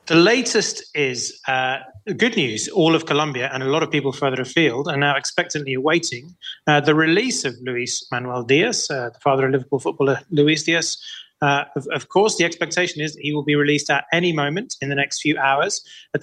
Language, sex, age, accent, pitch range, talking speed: English, male, 30-49, British, 135-170 Hz, 205 wpm